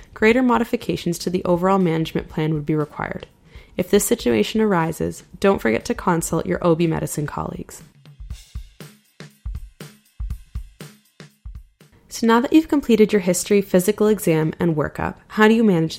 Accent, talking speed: American, 140 wpm